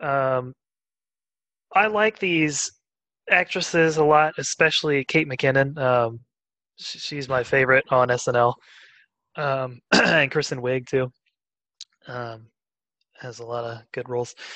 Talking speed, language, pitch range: 120 wpm, English, 125-165 Hz